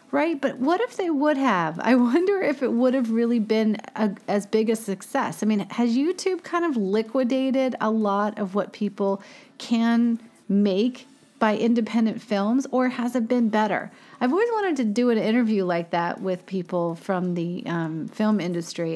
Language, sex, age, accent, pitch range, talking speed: English, female, 40-59, American, 195-260 Hz, 180 wpm